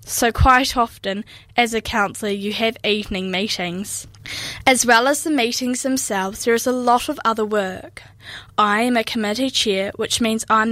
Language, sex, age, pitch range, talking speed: English, female, 10-29, 205-250 Hz, 180 wpm